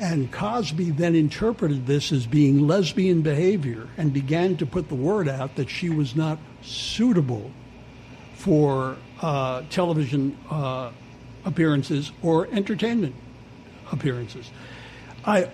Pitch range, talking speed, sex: 130-180 Hz, 115 wpm, male